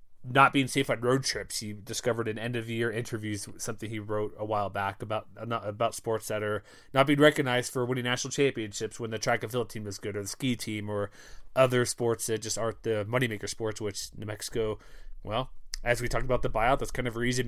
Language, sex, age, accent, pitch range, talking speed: English, male, 20-39, American, 105-125 Hz, 235 wpm